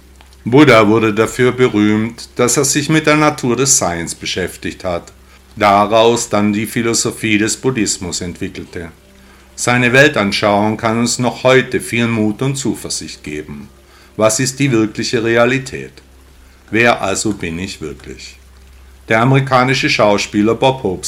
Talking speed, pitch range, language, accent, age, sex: 135 wpm, 80-130 Hz, German, German, 50-69, male